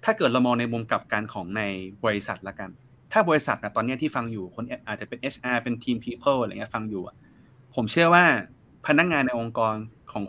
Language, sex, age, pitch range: Thai, male, 30-49, 105-130 Hz